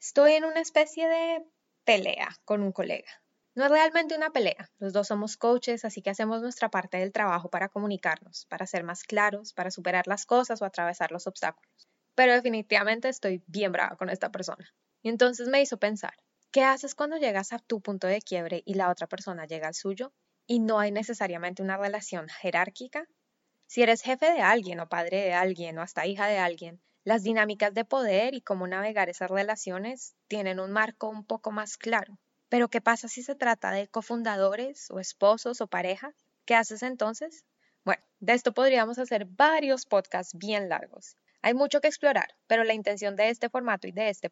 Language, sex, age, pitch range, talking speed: English, female, 10-29, 195-255 Hz, 190 wpm